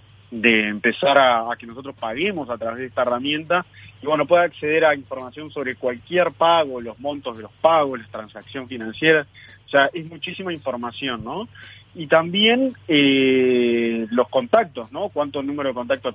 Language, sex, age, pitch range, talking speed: Spanish, male, 40-59, 115-155 Hz, 165 wpm